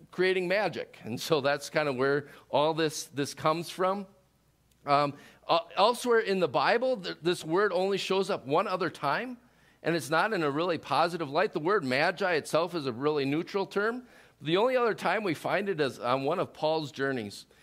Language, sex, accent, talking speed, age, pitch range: English, male, American, 195 wpm, 50-69, 145-195 Hz